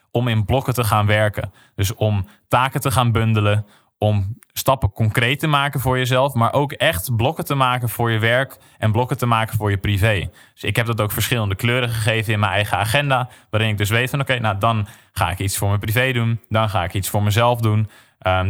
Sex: male